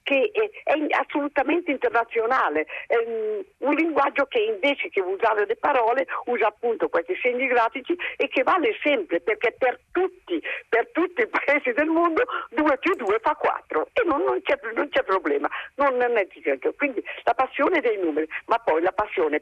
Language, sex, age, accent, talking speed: Italian, female, 50-69, native, 175 wpm